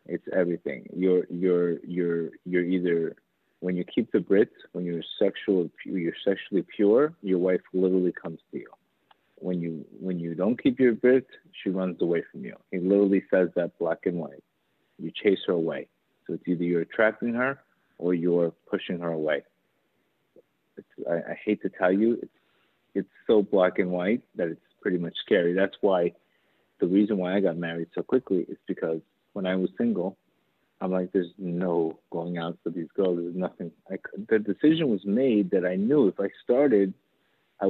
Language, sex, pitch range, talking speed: English, male, 85-100 Hz, 185 wpm